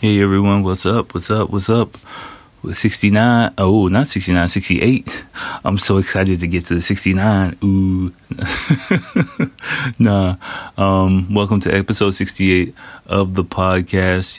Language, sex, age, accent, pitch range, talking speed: English, male, 30-49, American, 85-100 Hz, 130 wpm